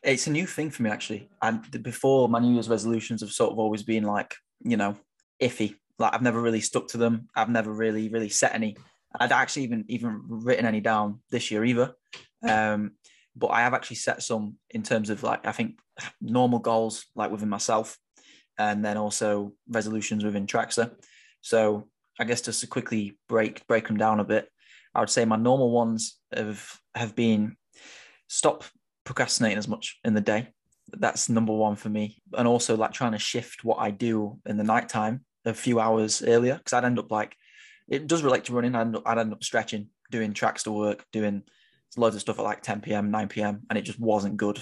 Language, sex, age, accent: English, male, 10-29, British